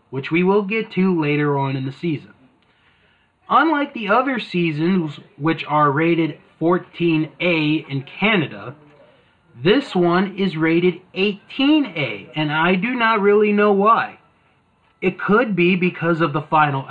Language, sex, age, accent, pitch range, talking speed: English, male, 30-49, American, 135-180 Hz, 140 wpm